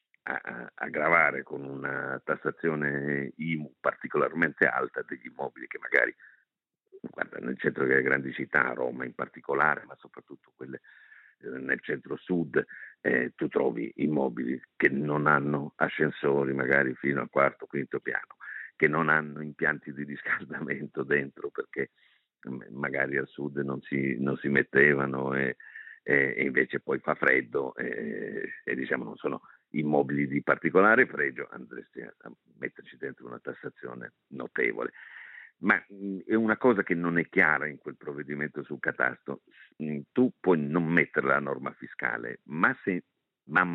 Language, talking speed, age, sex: Italian, 140 wpm, 50-69, male